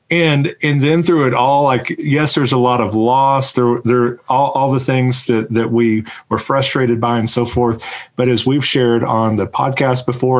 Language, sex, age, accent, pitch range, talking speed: English, male, 40-59, American, 115-130 Hz, 215 wpm